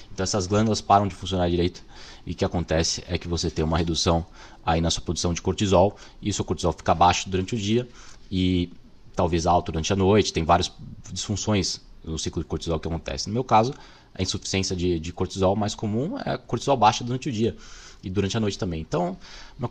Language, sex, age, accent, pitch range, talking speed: Portuguese, male, 20-39, Brazilian, 90-110 Hz, 215 wpm